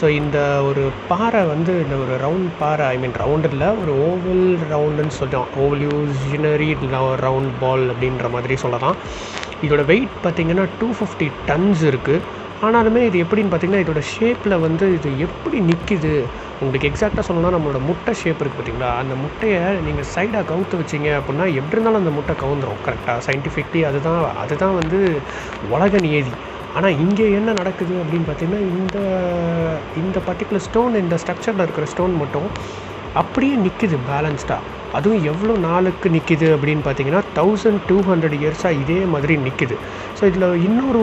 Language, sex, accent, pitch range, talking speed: Tamil, male, native, 140-185 Hz, 145 wpm